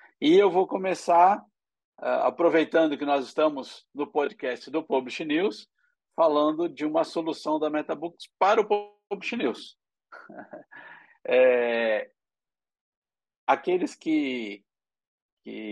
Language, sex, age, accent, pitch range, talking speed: Portuguese, male, 50-69, Brazilian, 140-215 Hz, 105 wpm